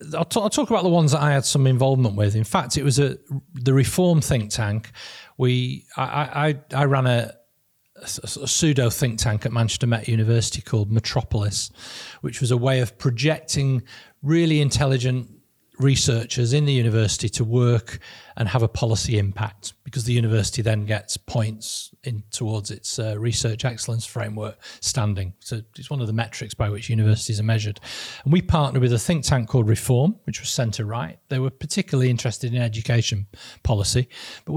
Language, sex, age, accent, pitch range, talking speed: English, male, 40-59, British, 115-140 Hz, 180 wpm